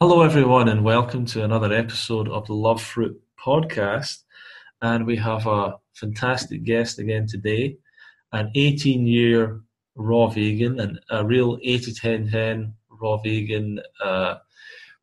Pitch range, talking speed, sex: 110-125 Hz, 135 wpm, male